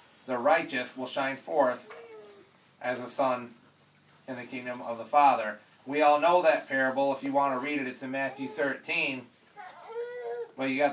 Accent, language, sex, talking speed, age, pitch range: American, English, male, 180 wpm, 30-49, 130-155 Hz